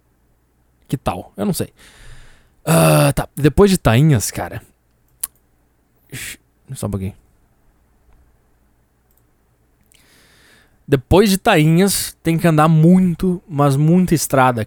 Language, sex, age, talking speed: Portuguese, male, 20-39, 100 wpm